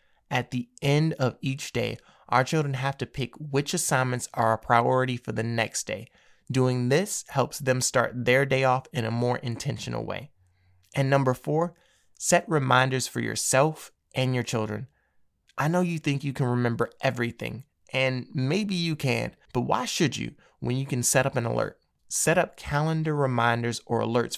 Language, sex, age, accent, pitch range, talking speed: English, male, 20-39, American, 120-140 Hz, 175 wpm